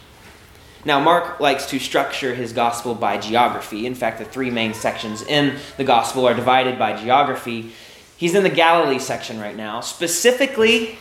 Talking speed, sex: 165 wpm, male